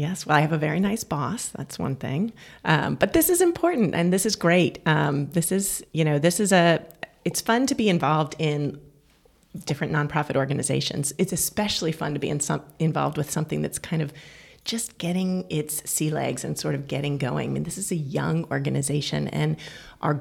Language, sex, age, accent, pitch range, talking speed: English, female, 30-49, American, 145-175 Hz, 205 wpm